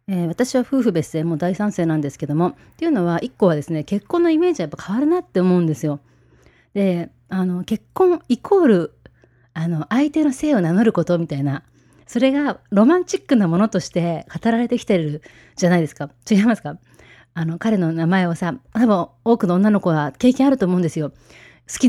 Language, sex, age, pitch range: Japanese, female, 30-49, 155-225 Hz